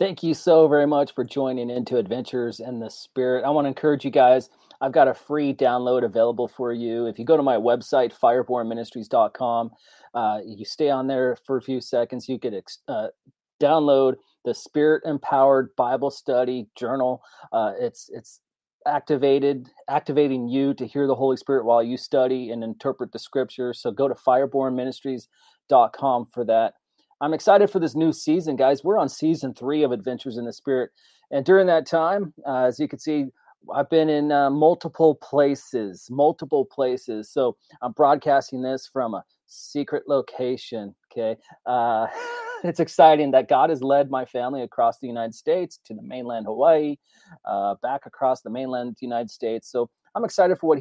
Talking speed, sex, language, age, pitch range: 175 wpm, male, English, 30-49, 125-145 Hz